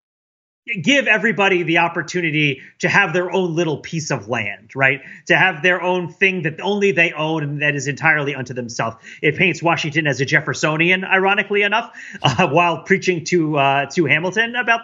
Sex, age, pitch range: male, 30-49, 140-185 Hz